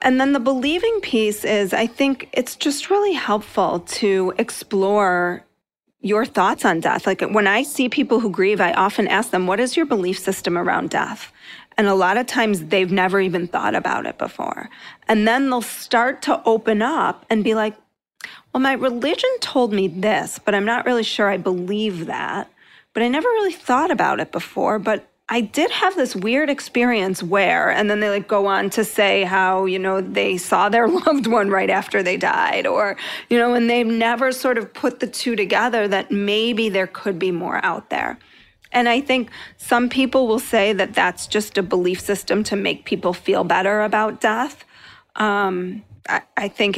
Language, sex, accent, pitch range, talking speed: English, female, American, 195-250 Hz, 195 wpm